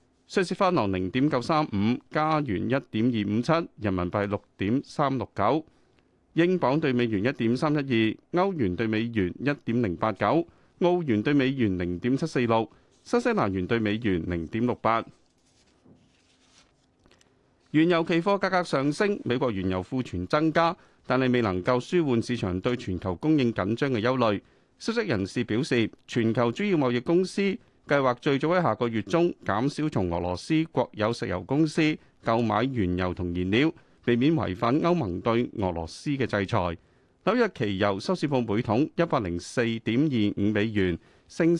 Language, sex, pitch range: Chinese, male, 105-155 Hz